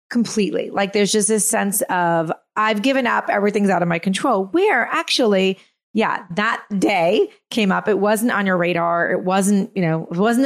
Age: 30-49